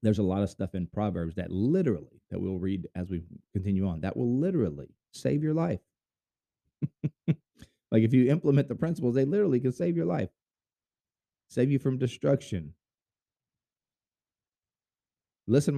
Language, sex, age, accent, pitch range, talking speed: English, male, 30-49, American, 100-130 Hz, 150 wpm